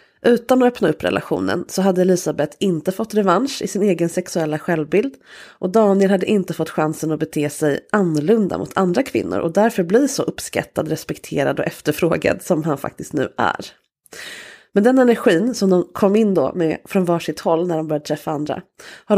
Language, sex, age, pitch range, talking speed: English, female, 30-49, 165-210 Hz, 190 wpm